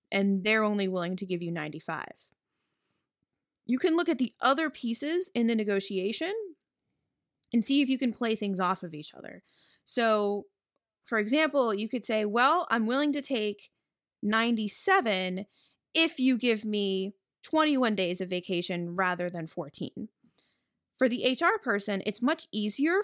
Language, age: English, 20-39